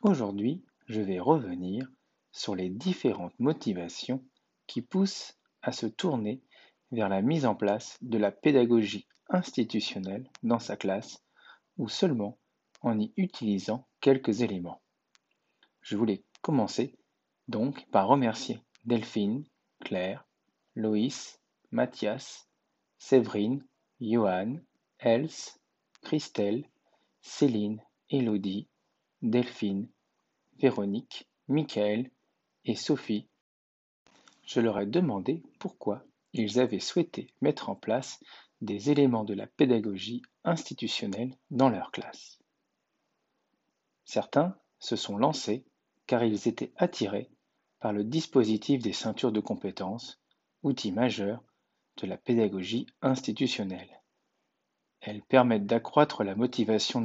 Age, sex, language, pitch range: 50-69, male, French, 105-130 Hz